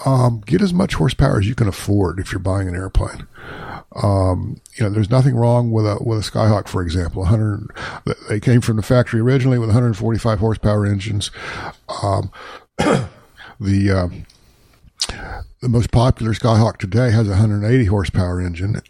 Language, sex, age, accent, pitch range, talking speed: English, male, 50-69, American, 95-115 Hz, 160 wpm